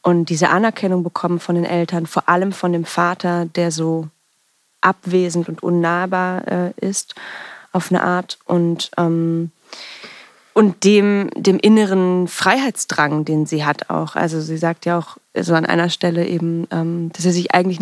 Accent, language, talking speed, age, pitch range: German, German, 165 wpm, 20-39, 170-185 Hz